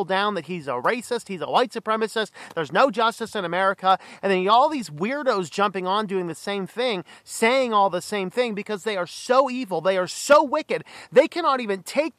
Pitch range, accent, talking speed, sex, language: 225-315 Hz, American, 210 wpm, male, English